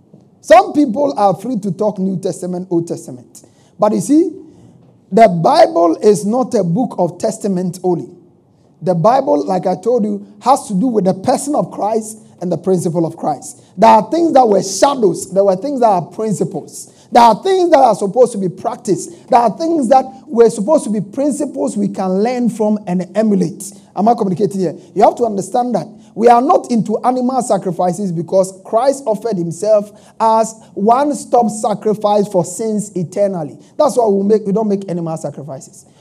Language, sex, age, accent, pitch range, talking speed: English, male, 50-69, Nigerian, 190-245 Hz, 185 wpm